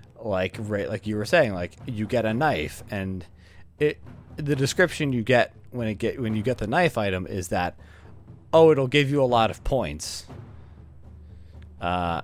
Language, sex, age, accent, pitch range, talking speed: English, male, 30-49, American, 95-120 Hz, 180 wpm